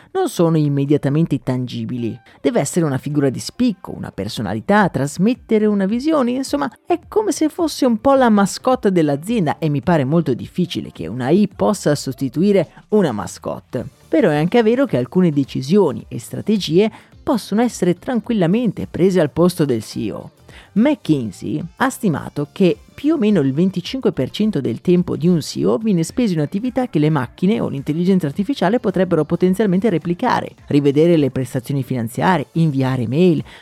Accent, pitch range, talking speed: native, 145-220 Hz, 155 wpm